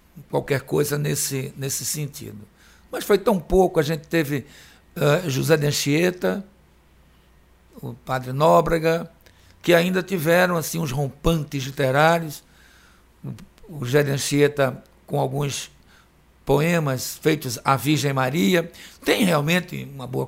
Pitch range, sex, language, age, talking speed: 125-165 Hz, male, Portuguese, 60-79, 125 wpm